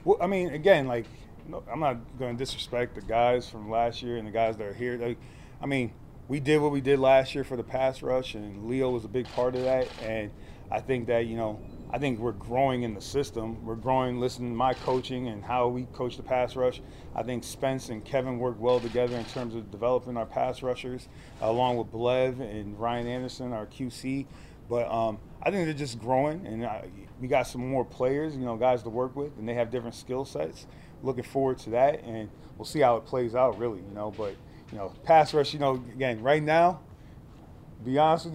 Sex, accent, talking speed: male, American, 235 wpm